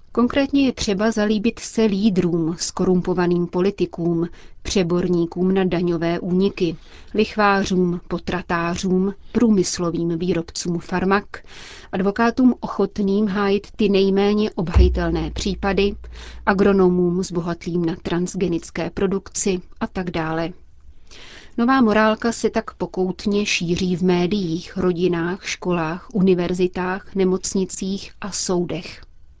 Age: 30-49